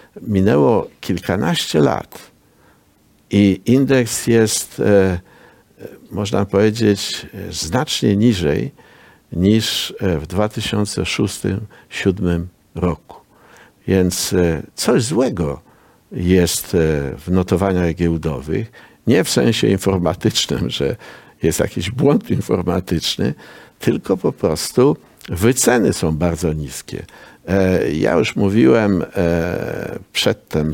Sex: male